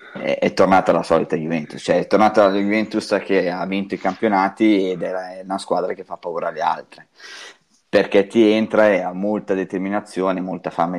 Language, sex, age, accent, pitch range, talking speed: Italian, male, 20-39, native, 90-105 Hz, 180 wpm